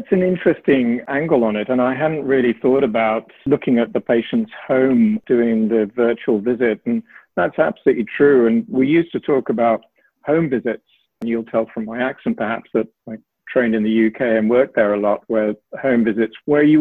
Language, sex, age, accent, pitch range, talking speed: English, male, 50-69, British, 115-140 Hz, 200 wpm